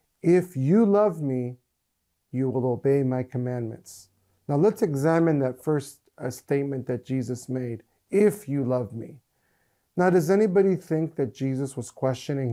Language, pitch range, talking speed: English, 125-165 Hz, 145 wpm